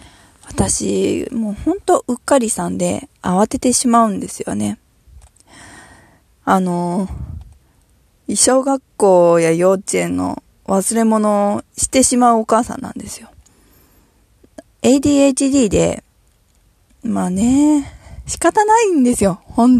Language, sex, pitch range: Japanese, female, 180-265 Hz